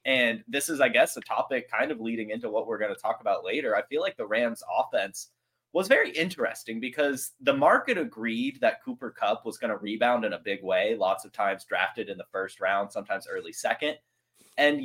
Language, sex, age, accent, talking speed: English, male, 20-39, American, 220 wpm